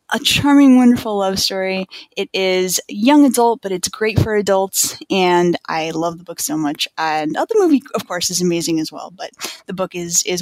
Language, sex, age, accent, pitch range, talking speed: English, female, 10-29, American, 175-235 Hz, 200 wpm